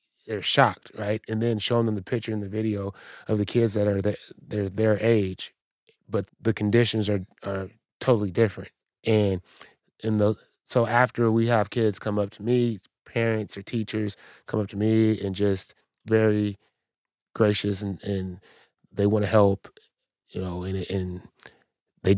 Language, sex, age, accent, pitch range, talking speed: English, male, 20-39, American, 95-110 Hz, 170 wpm